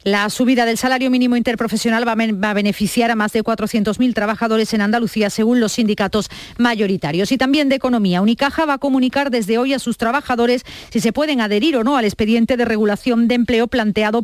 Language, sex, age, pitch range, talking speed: Spanish, female, 40-59, 215-255 Hz, 195 wpm